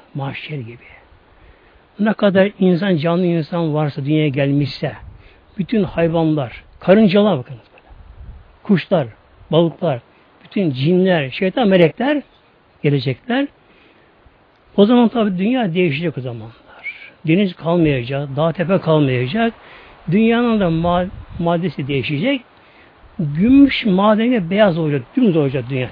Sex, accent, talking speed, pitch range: male, native, 105 wpm, 140-200 Hz